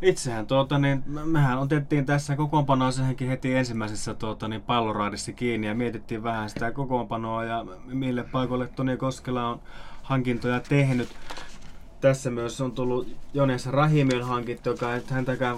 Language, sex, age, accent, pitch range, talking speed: Finnish, male, 20-39, native, 110-130 Hz, 145 wpm